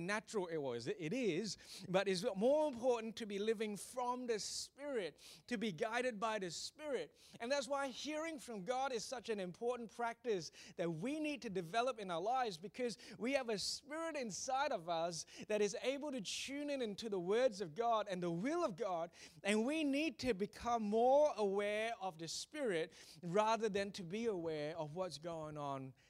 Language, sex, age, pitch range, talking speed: English, male, 30-49, 170-235 Hz, 190 wpm